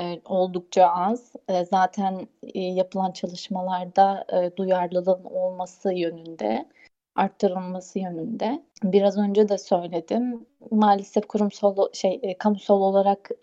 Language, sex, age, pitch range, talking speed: Turkish, female, 30-49, 185-220 Hz, 85 wpm